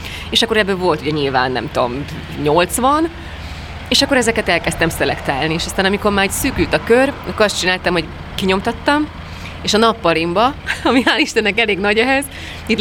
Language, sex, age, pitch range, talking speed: Hungarian, female, 30-49, 155-195 Hz, 175 wpm